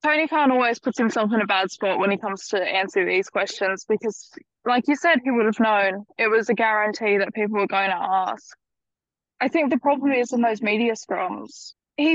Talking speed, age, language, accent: 215 wpm, 10-29, English, Australian